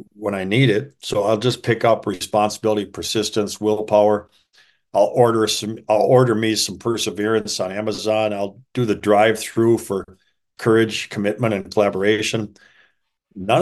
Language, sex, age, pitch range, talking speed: English, male, 50-69, 100-115 Hz, 145 wpm